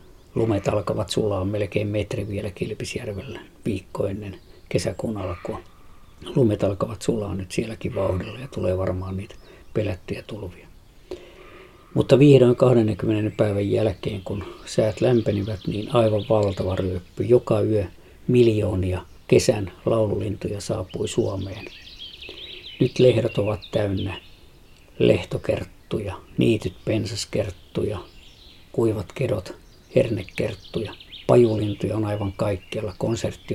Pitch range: 95-110 Hz